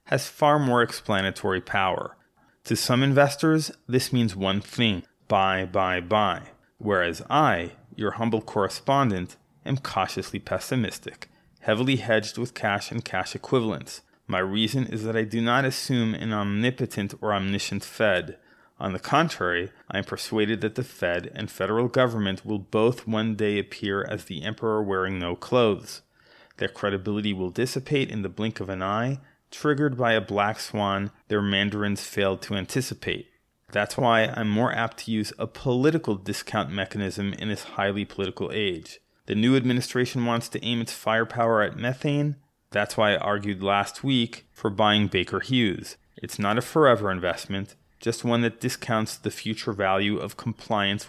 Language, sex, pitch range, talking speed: English, male, 100-125 Hz, 160 wpm